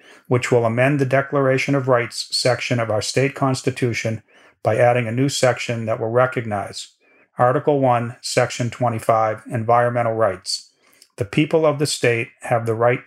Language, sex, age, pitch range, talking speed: English, male, 40-59, 120-135 Hz, 155 wpm